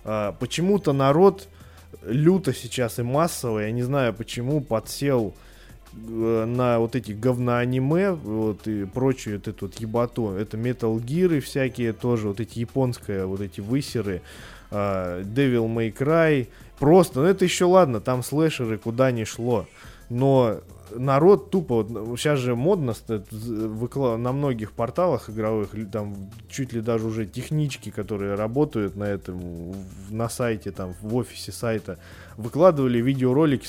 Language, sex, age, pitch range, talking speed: Russian, male, 20-39, 110-135 Hz, 135 wpm